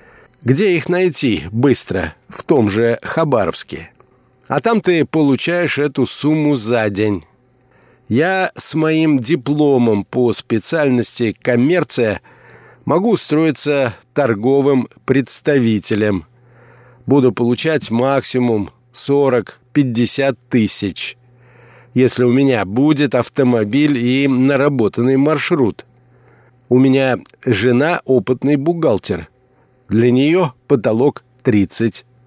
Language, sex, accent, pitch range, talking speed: Russian, male, native, 120-140 Hz, 90 wpm